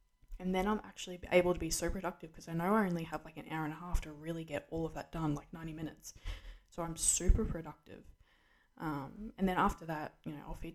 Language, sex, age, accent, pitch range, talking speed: English, female, 10-29, Australian, 150-180 Hz, 245 wpm